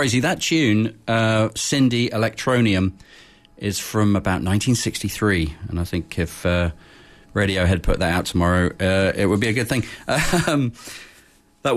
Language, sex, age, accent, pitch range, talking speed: English, male, 40-59, British, 85-105 Hz, 140 wpm